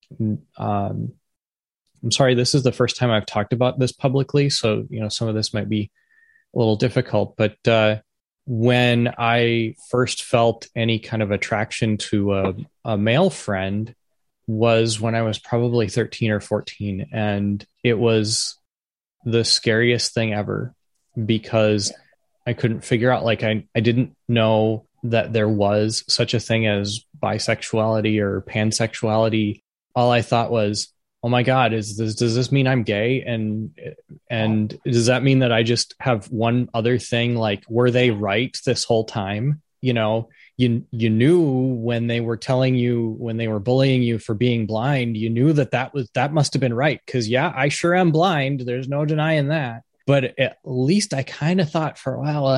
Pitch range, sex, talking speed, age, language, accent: 110-130 Hz, male, 175 wpm, 20-39, English, American